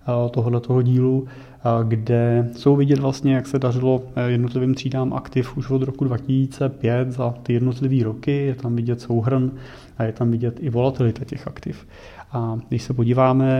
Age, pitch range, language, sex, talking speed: 30-49, 115-130 Hz, Czech, male, 160 wpm